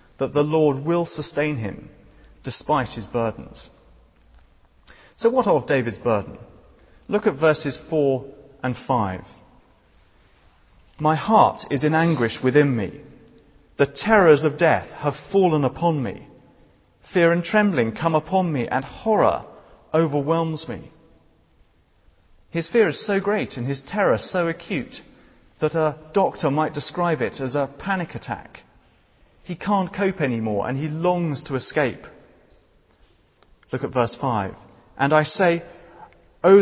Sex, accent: male, British